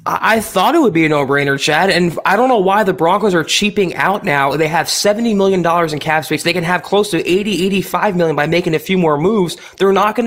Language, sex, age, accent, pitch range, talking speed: English, male, 20-39, American, 150-185 Hz, 250 wpm